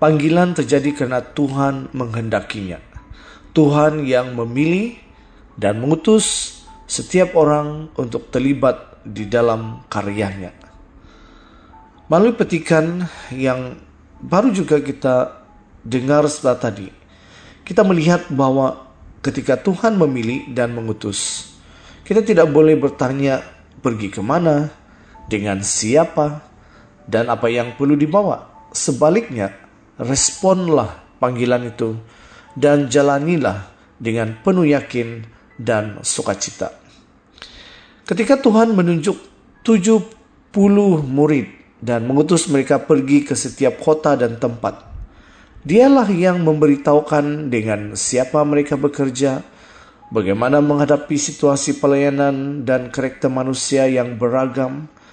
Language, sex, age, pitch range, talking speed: Indonesian, male, 30-49, 115-155 Hz, 95 wpm